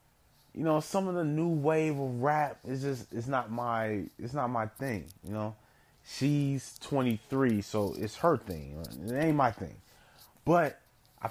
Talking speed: 170 wpm